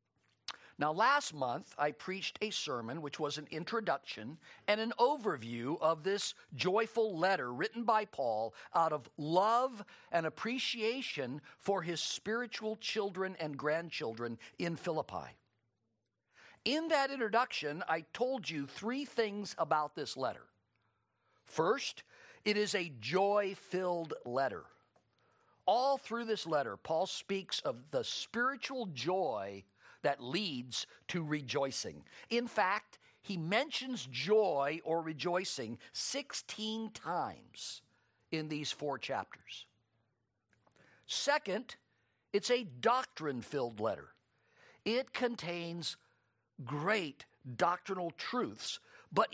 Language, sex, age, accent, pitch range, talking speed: English, male, 50-69, American, 140-220 Hz, 110 wpm